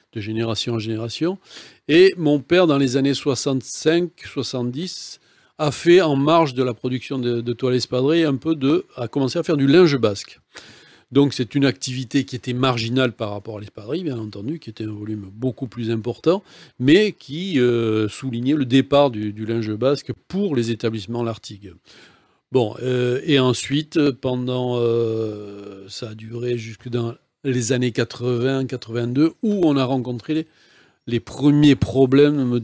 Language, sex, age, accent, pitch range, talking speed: French, male, 40-59, French, 115-140 Hz, 160 wpm